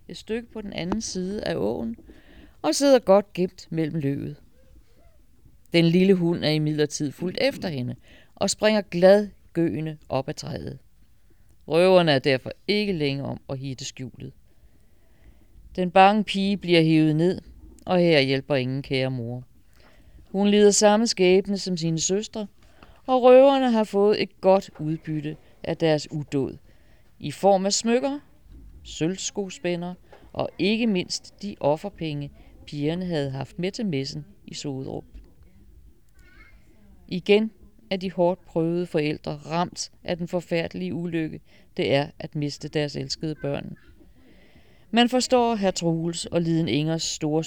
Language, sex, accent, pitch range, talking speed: Danish, female, native, 145-190 Hz, 140 wpm